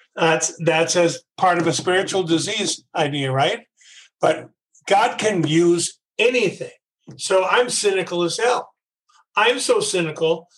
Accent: American